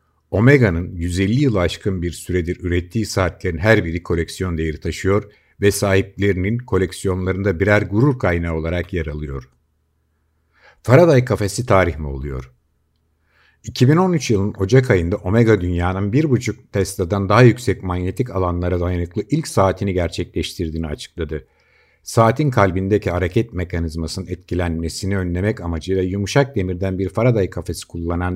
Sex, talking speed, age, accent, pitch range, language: male, 125 wpm, 50-69, native, 85-105 Hz, Turkish